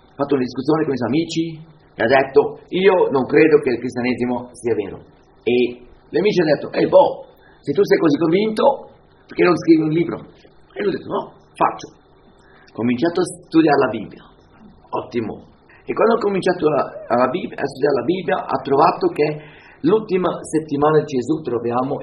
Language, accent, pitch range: Italian, native, 125-195 Hz